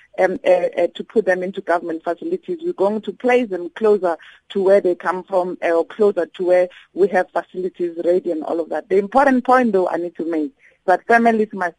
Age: 50-69